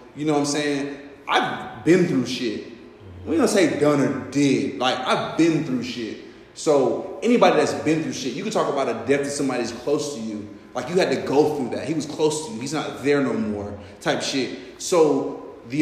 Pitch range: 125-160 Hz